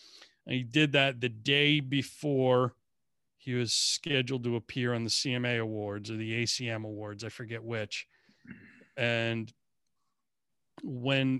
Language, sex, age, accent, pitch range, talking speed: English, male, 40-59, American, 110-130 Hz, 125 wpm